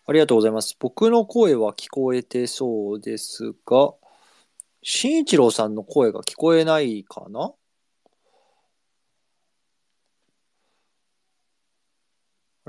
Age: 40-59